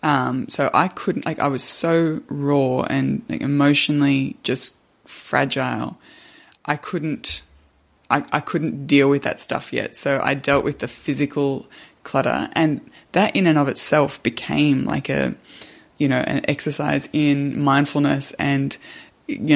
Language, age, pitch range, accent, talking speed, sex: English, 20-39, 140-155 Hz, Australian, 145 wpm, female